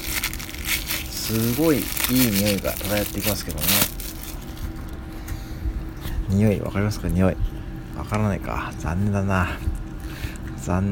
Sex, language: male, Japanese